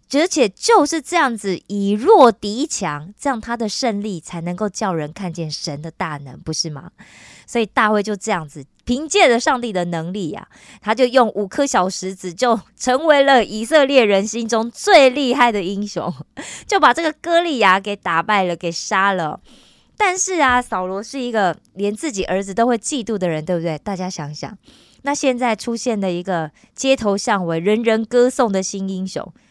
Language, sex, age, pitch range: Korean, female, 20-39, 185-250 Hz